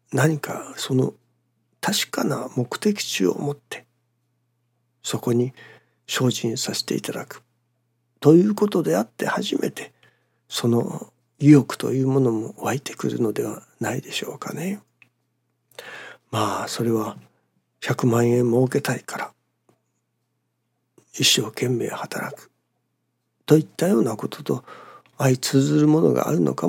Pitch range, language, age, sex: 120-140 Hz, Japanese, 60-79, male